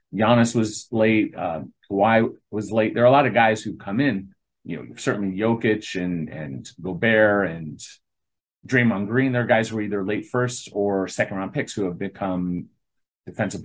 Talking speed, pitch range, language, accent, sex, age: 180 wpm, 95-125 Hz, English, American, male, 30-49